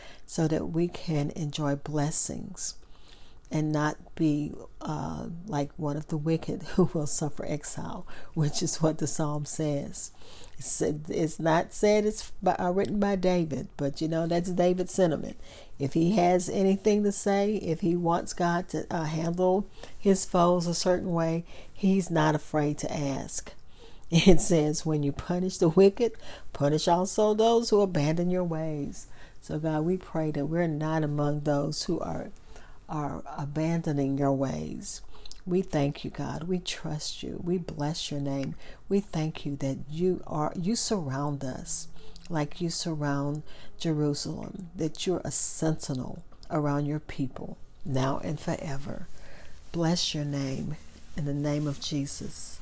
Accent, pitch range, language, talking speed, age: American, 145-180 Hz, English, 155 wpm, 40-59